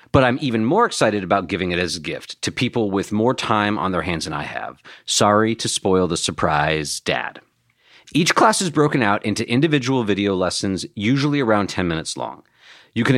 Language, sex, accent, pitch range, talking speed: English, male, American, 100-135 Hz, 200 wpm